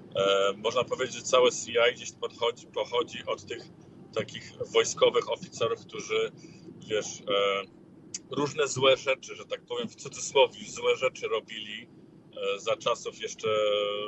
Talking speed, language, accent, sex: 120 wpm, Polish, native, male